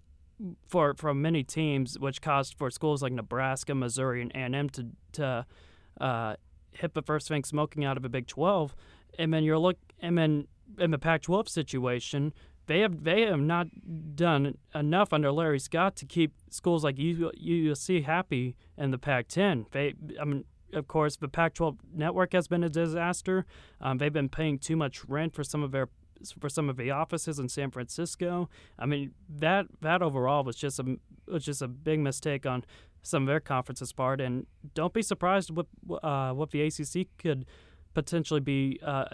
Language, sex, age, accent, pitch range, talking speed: English, male, 30-49, American, 130-160 Hz, 190 wpm